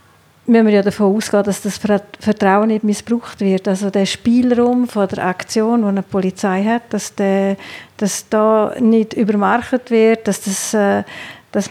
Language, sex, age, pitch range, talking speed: English, female, 50-69, 200-220 Hz, 165 wpm